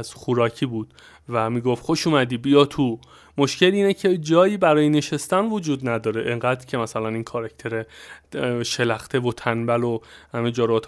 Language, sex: Persian, male